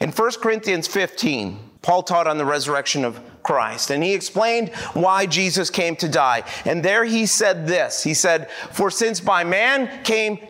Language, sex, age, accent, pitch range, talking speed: English, male, 30-49, American, 185-230 Hz, 175 wpm